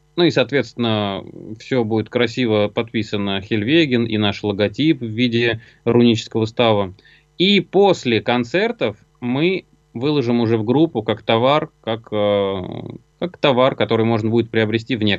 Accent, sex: native, male